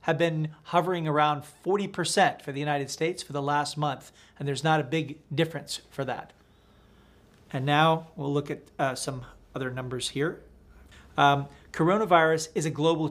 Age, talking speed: 40-59, 165 wpm